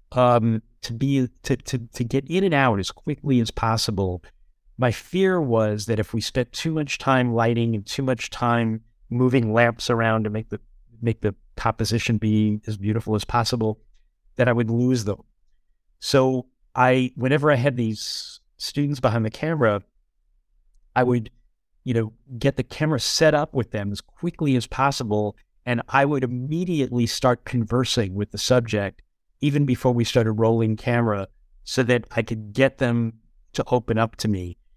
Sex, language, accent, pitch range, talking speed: male, English, American, 110-130 Hz, 170 wpm